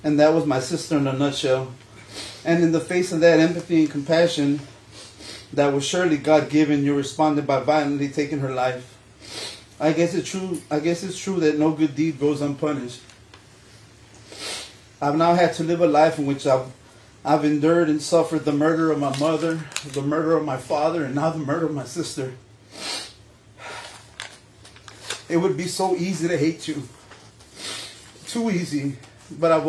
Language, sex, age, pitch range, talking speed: English, male, 30-49, 120-160 Hz, 165 wpm